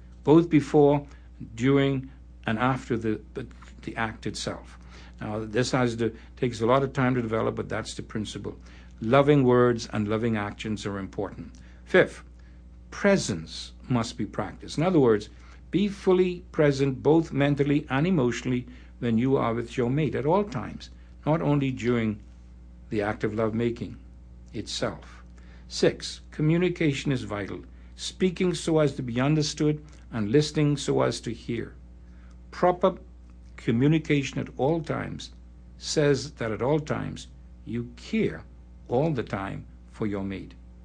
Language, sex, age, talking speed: English, male, 60-79, 145 wpm